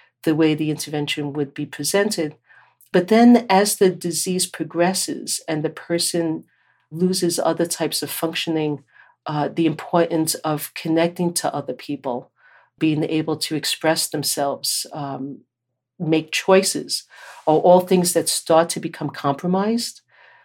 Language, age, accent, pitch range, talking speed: English, 50-69, American, 150-175 Hz, 130 wpm